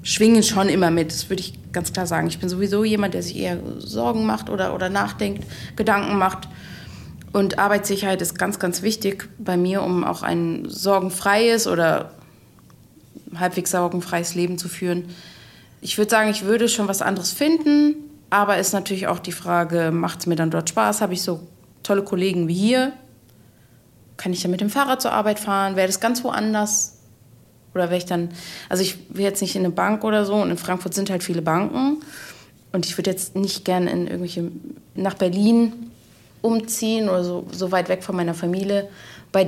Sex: female